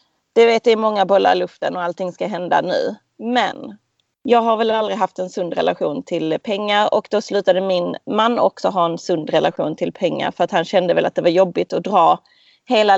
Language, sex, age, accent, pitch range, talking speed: Swedish, female, 30-49, native, 200-255 Hz, 220 wpm